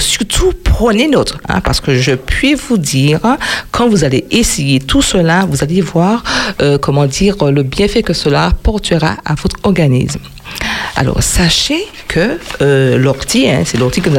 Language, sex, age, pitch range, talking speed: French, female, 50-69, 135-195 Hz, 165 wpm